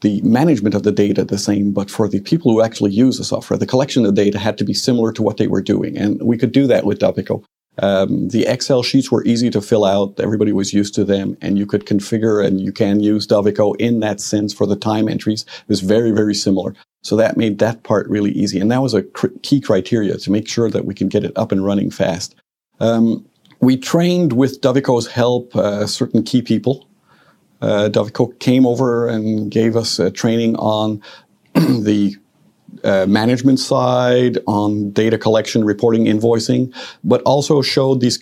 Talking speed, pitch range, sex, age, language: 205 wpm, 105-125 Hz, male, 50-69, English